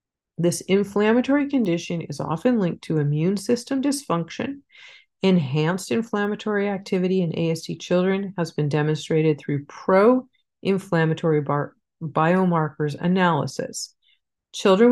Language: English